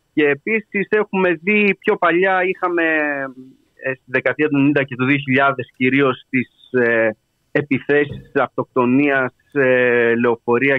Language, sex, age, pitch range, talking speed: Greek, male, 30-49, 120-165 Hz, 110 wpm